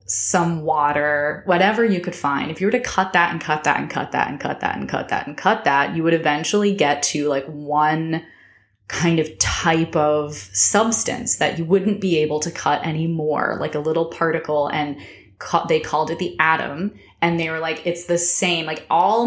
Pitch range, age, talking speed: 155-205 Hz, 20-39, 210 wpm